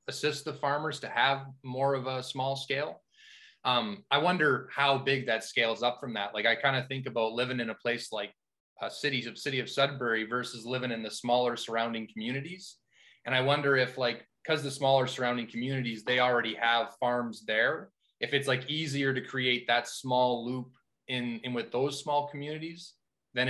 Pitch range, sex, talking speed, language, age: 115-140 Hz, male, 190 wpm, English, 20-39